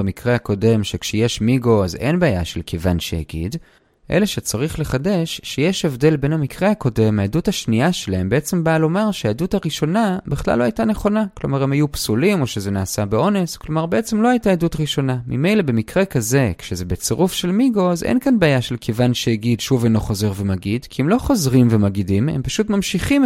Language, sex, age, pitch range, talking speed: Hebrew, male, 30-49, 115-190 Hz, 180 wpm